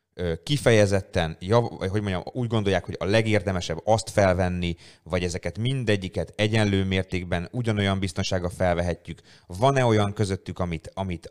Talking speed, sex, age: 120 wpm, male, 30-49